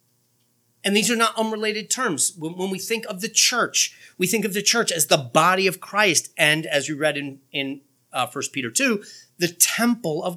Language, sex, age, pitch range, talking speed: English, male, 30-49, 145-205 Hz, 205 wpm